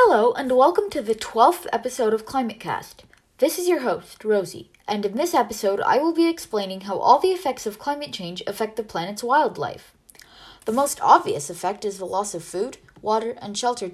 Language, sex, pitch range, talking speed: English, female, 190-260 Hz, 200 wpm